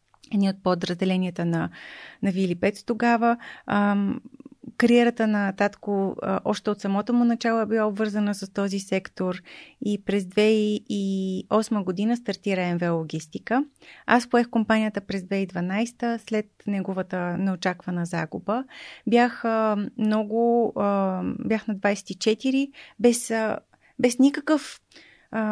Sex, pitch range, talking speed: female, 200-240 Hz, 105 wpm